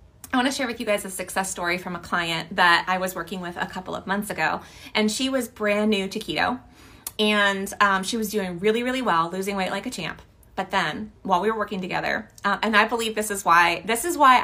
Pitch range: 185-230 Hz